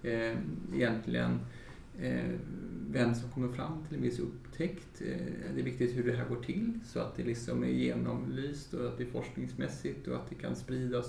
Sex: male